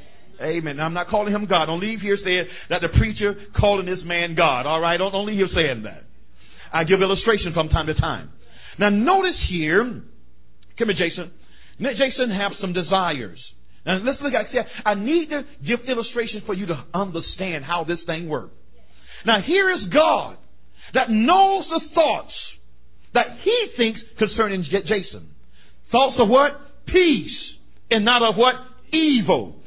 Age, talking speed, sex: 50-69, 165 wpm, male